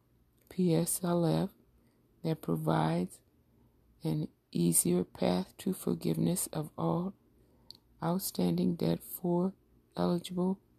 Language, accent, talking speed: English, American, 80 wpm